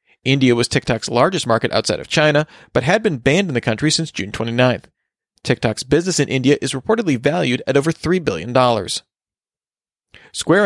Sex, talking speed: male, 170 wpm